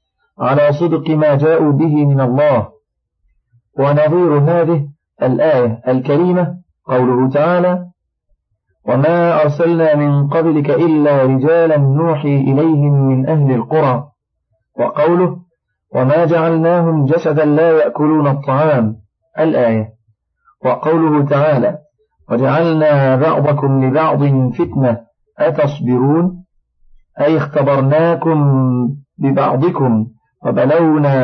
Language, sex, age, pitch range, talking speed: Arabic, male, 50-69, 125-155 Hz, 85 wpm